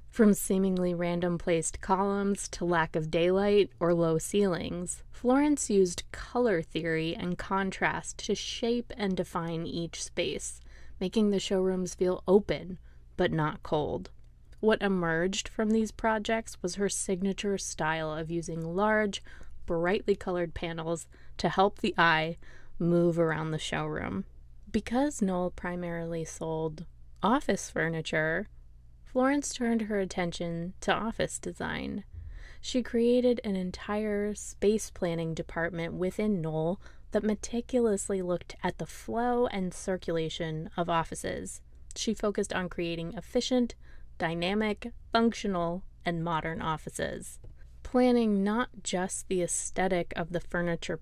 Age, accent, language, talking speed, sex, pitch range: 20-39, American, English, 120 wpm, female, 165-205 Hz